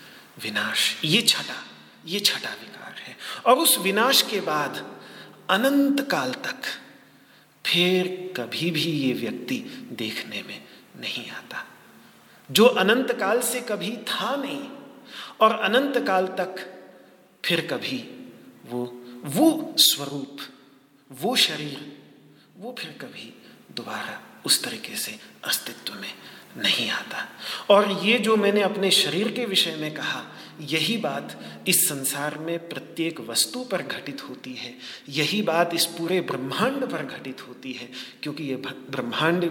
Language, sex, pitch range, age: Hindi, male, 145-235 Hz, 40-59